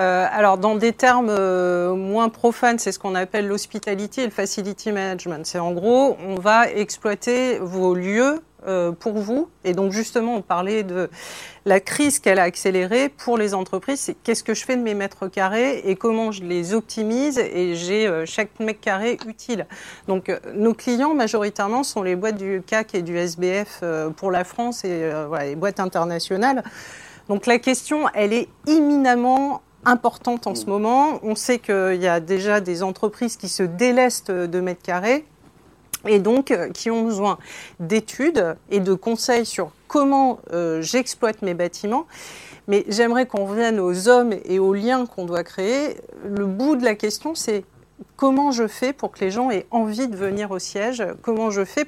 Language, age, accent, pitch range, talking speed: French, 40-59, French, 190-240 Hz, 175 wpm